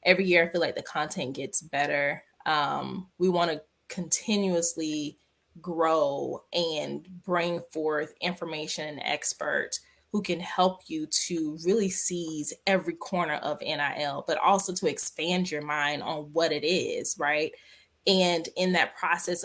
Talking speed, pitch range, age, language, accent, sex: 140 wpm, 155-190 Hz, 20-39, English, American, female